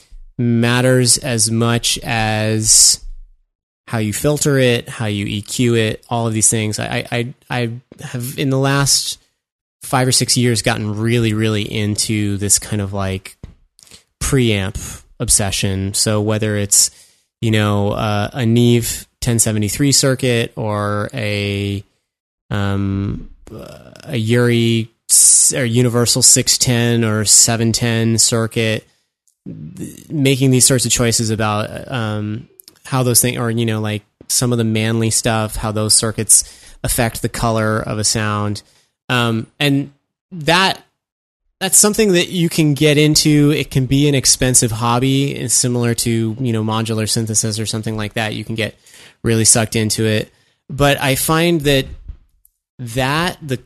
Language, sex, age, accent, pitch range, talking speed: English, male, 20-39, American, 110-130 Hz, 140 wpm